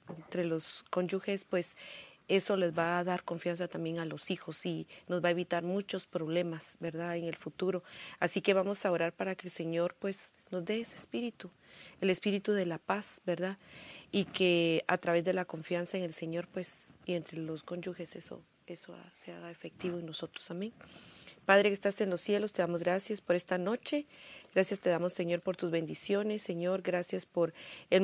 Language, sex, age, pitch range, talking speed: English, female, 40-59, 170-195 Hz, 195 wpm